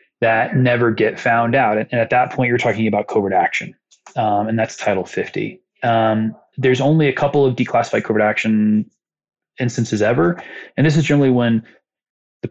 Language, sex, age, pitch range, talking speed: English, male, 20-39, 105-125 Hz, 175 wpm